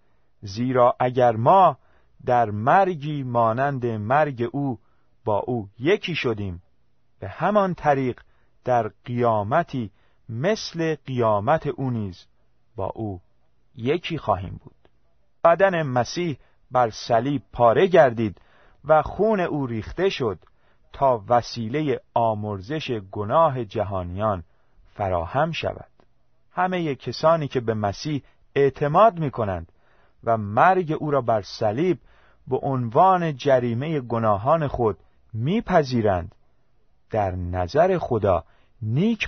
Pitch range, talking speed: 105-150 Hz, 100 wpm